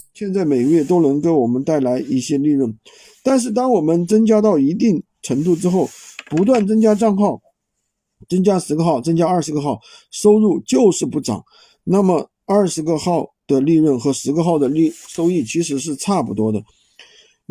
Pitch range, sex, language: 155-215 Hz, male, Chinese